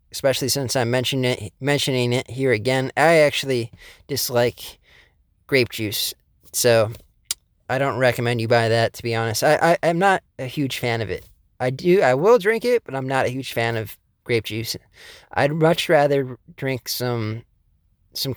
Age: 20-39